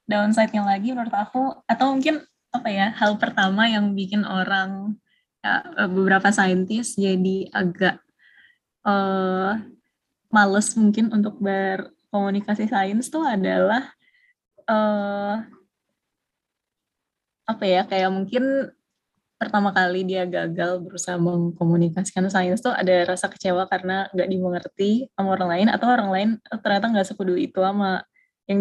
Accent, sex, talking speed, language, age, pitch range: native, female, 120 wpm, Indonesian, 20-39, 185-215 Hz